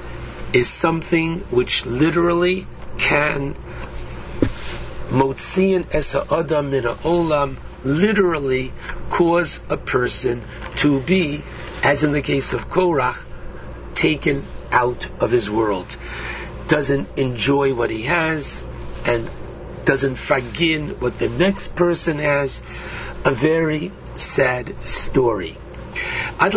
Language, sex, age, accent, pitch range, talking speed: English, male, 60-79, American, 125-170 Hz, 90 wpm